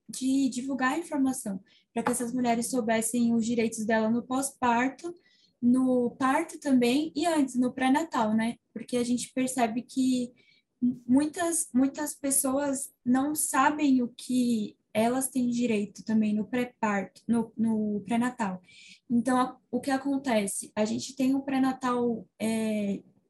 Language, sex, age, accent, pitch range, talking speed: Portuguese, female, 10-29, Brazilian, 230-270 Hz, 140 wpm